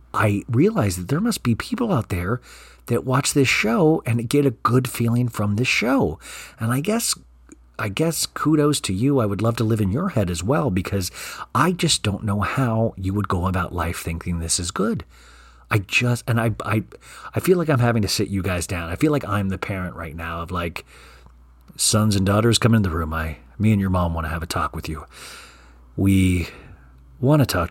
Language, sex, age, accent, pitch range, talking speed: English, male, 40-59, American, 85-125 Hz, 220 wpm